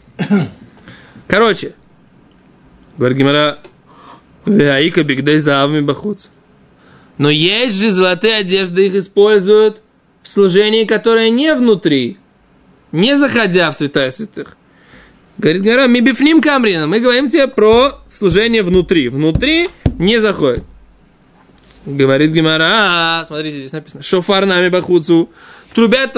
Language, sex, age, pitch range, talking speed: Russian, male, 20-39, 160-210 Hz, 100 wpm